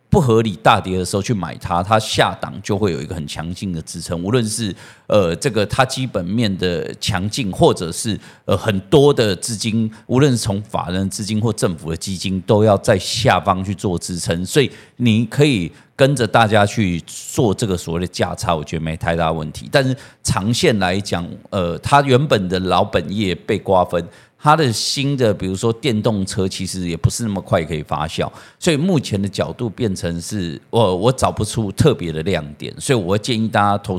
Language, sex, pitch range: Chinese, male, 90-115 Hz